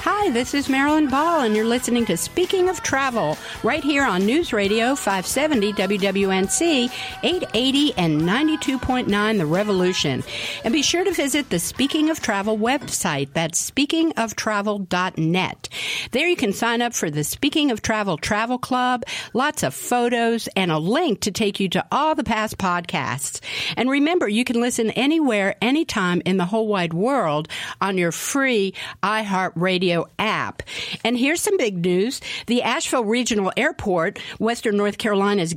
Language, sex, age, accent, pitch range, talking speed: English, female, 50-69, American, 185-255 Hz, 150 wpm